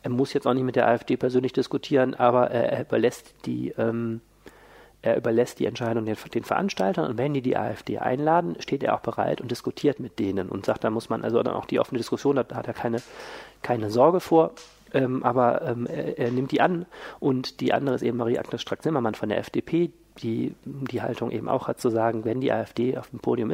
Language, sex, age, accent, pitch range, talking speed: German, male, 40-59, German, 115-135 Hz, 225 wpm